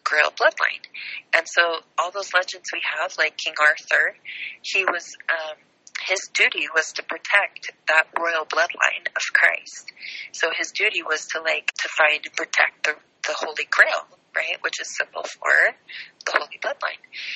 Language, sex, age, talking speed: English, female, 30-49, 165 wpm